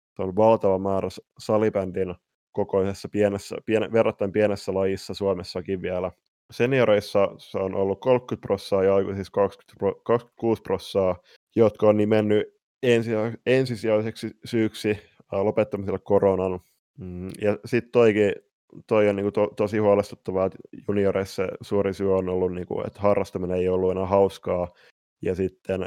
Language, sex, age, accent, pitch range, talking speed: Finnish, male, 20-39, native, 95-105 Hz, 125 wpm